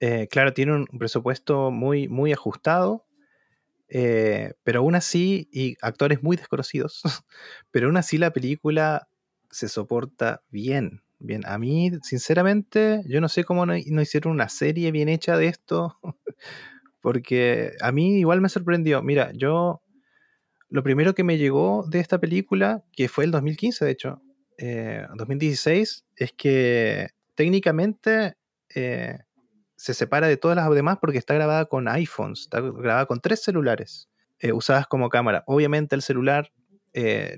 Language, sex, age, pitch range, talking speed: Spanish, male, 20-39, 125-175 Hz, 150 wpm